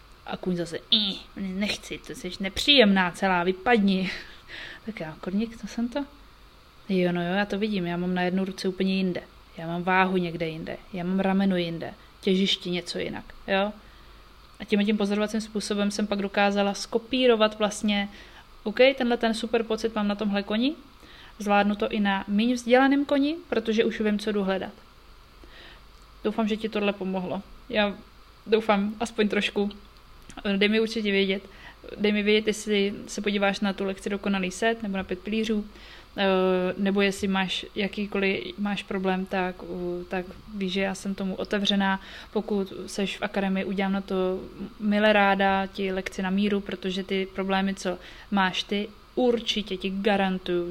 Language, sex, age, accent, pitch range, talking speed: Czech, female, 30-49, native, 190-215 Hz, 165 wpm